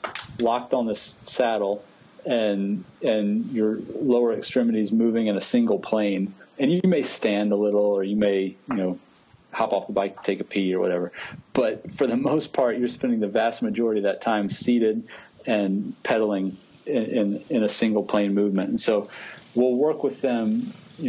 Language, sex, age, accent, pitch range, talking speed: English, male, 40-59, American, 100-125 Hz, 180 wpm